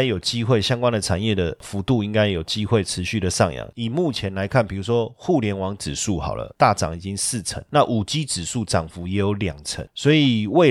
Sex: male